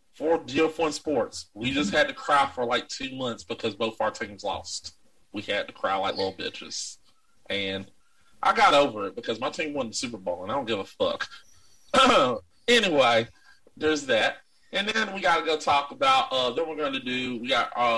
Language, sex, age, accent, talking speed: English, male, 30-49, American, 195 wpm